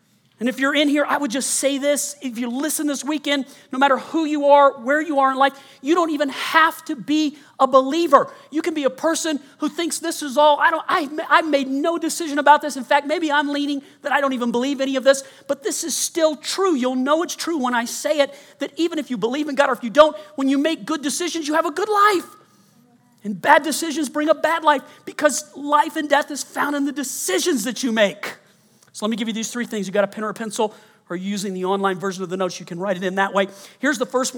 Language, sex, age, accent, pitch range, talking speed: English, male, 40-59, American, 255-320 Hz, 260 wpm